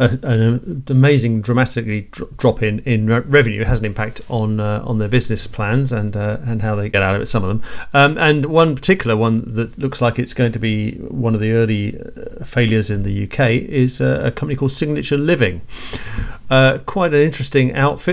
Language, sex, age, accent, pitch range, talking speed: English, male, 40-59, British, 110-135 Hz, 205 wpm